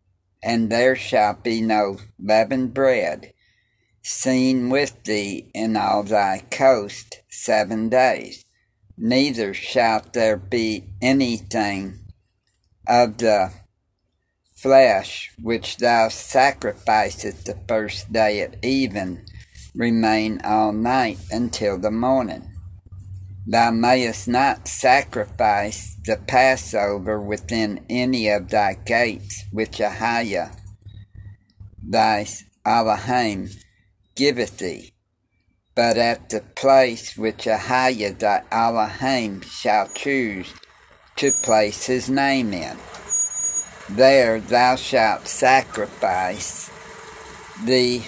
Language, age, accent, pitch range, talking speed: English, 60-79, American, 100-120 Hz, 95 wpm